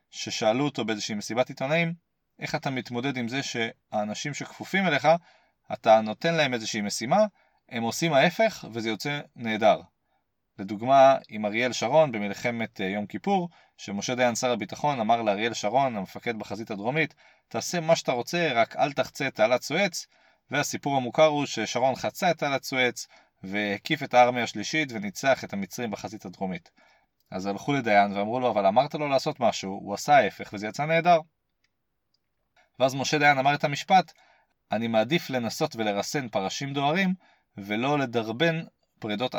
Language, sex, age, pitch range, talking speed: Hebrew, male, 30-49, 110-155 Hz, 150 wpm